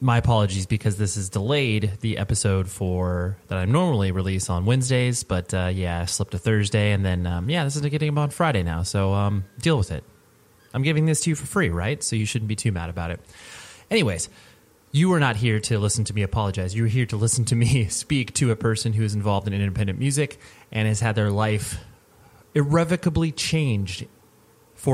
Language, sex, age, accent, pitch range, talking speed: English, male, 30-49, American, 100-120 Hz, 210 wpm